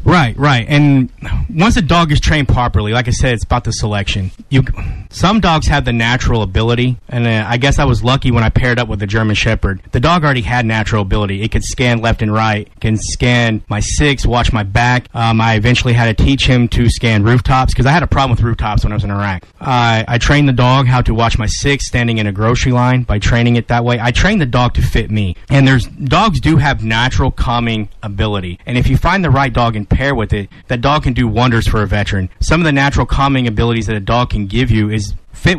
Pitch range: 110-130 Hz